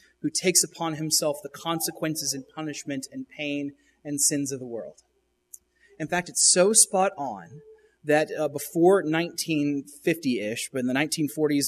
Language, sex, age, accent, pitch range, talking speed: English, male, 30-49, American, 145-185 Hz, 150 wpm